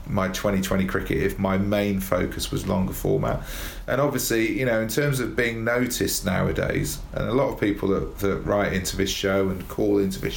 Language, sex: English, male